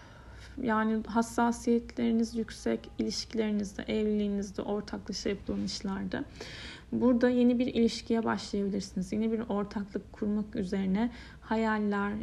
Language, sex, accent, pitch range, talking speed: Turkish, female, native, 200-235 Hz, 90 wpm